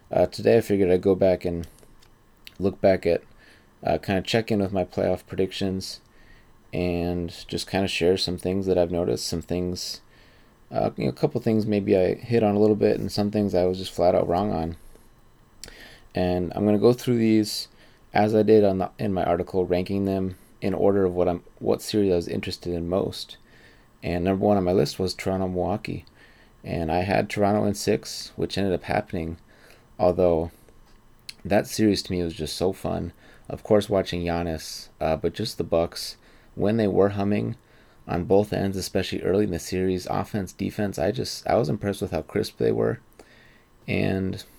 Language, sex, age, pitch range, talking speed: English, male, 30-49, 90-105 Hz, 195 wpm